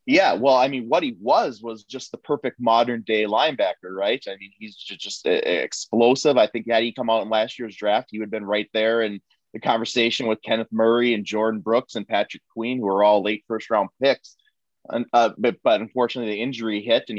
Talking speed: 225 wpm